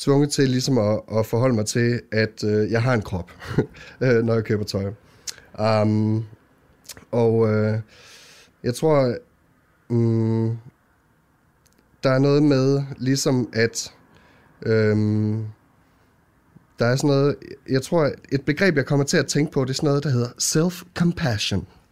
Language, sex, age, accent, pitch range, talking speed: Danish, male, 30-49, native, 110-140 Hz, 135 wpm